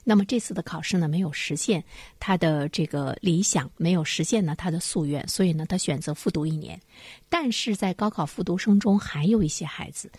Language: Chinese